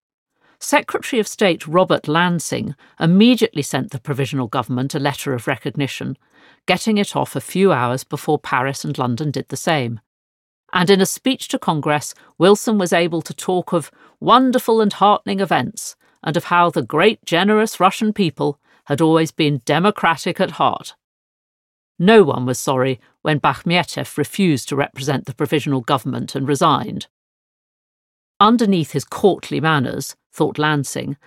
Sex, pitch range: female, 145-205 Hz